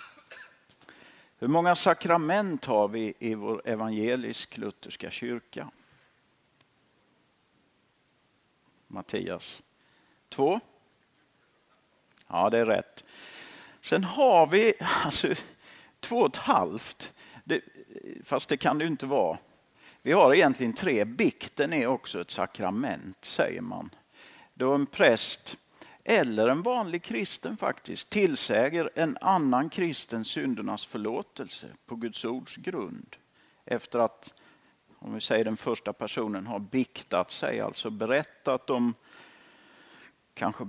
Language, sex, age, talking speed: Swedish, male, 50-69, 110 wpm